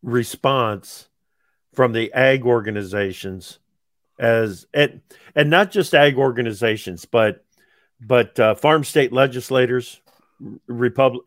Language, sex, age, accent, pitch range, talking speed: English, male, 50-69, American, 120-145 Hz, 100 wpm